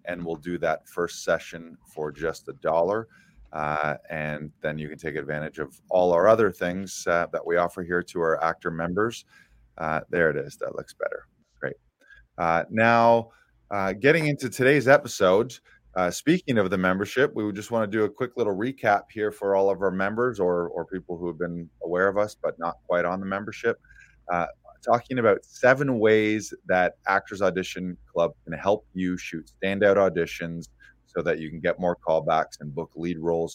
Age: 30-49